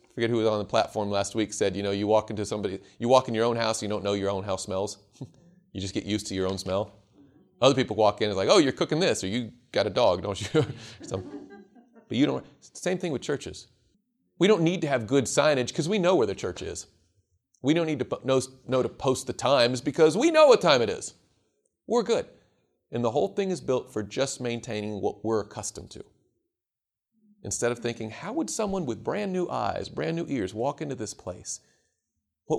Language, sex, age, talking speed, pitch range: English, male, 40-59, 230 wpm, 105-170 Hz